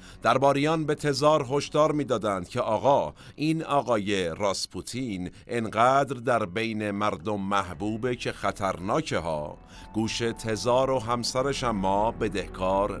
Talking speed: 110 wpm